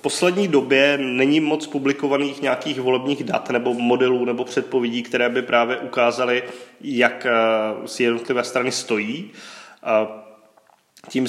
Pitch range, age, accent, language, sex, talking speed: 120-130 Hz, 20-39, native, Czech, male, 130 wpm